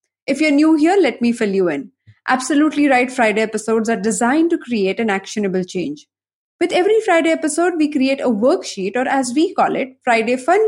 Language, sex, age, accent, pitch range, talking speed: English, female, 20-39, Indian, 220-300 Hz, 195 wpm